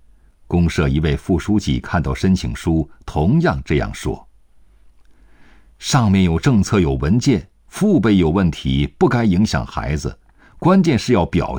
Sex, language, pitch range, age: male, Chinese, 75-105 Hz, 50-69